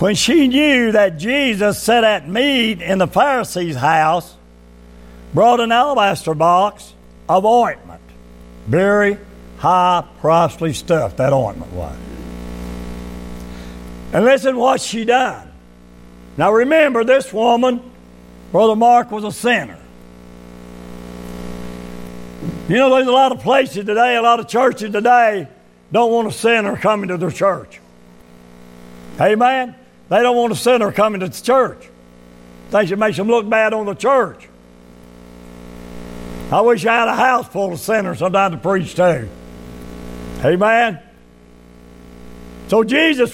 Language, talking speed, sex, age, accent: English, 135 wpm, male, 60-79, American